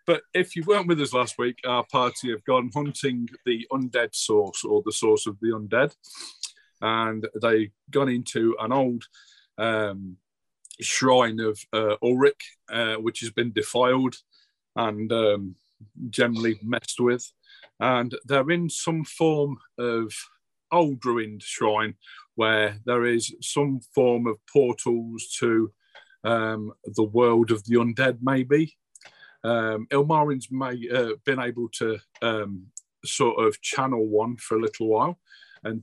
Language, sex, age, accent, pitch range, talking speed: English, male, 40-59, British, 110-135 Hz, 140 wpm